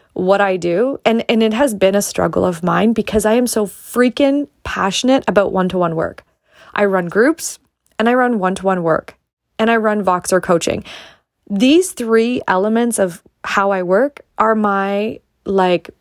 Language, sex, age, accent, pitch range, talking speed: English, female, 20-39, American, 175-205 Hz, 165 wpm